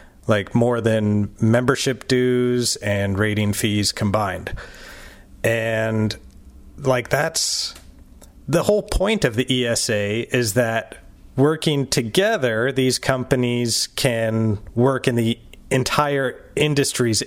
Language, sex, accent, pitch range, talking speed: English, male, American, 105-135 Hz, 105 wpm